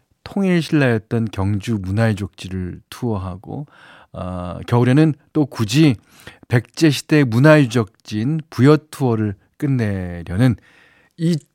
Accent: native